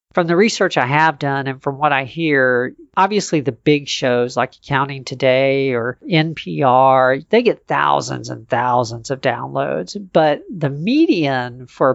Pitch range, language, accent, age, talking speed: 135-165 Hz, English, American, 40-59, 155 wpm